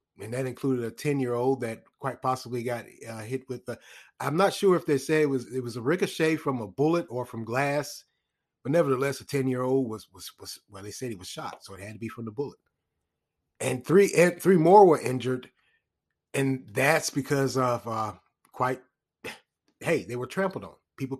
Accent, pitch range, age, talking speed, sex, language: American, 120-155 Hz, 30-49, 210 wpm, male, English